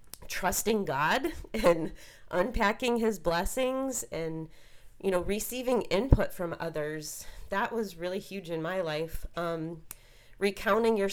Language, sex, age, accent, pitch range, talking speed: English, female, 30-49, American, 165-220 Hz, 125 wpm